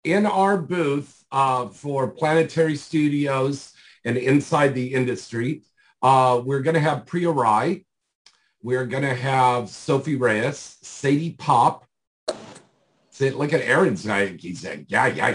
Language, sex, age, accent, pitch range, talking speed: English, male, 50-69, American, 115-140 Hz, 125 wpm